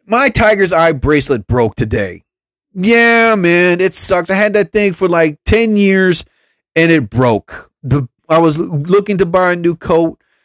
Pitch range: 135-200 Hz